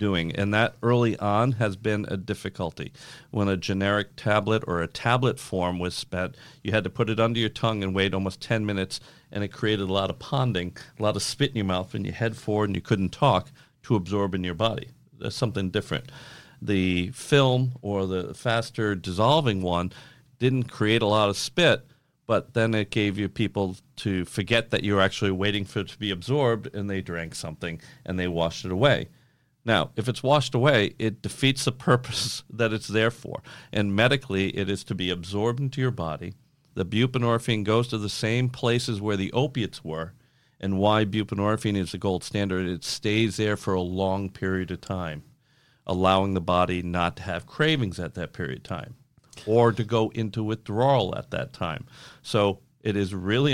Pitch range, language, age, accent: 95-120 Hz, English, 50-69, American